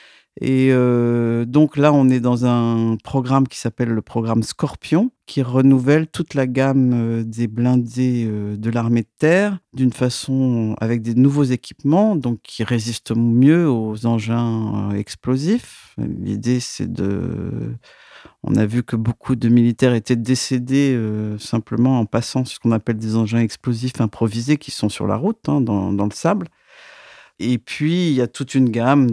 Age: 50-69